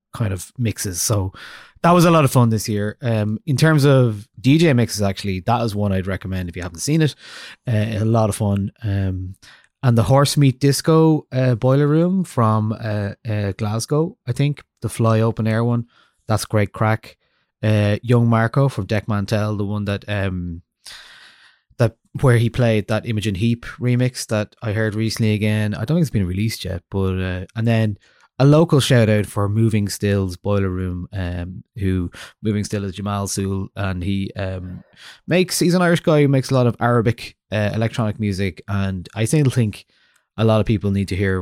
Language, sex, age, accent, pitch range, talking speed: English, male, 20-39, Irish, 95-120 Hz, 195 wpm